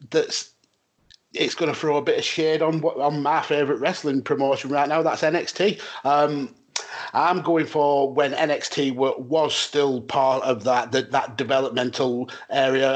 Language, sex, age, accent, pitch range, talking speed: English, male, 30-49, British, 125-155 Hz, 160 wpm